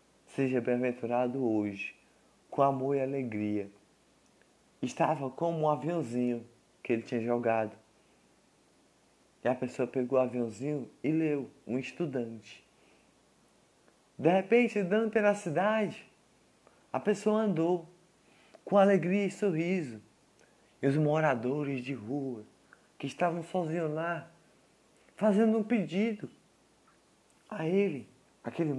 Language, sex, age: English, male, 20-39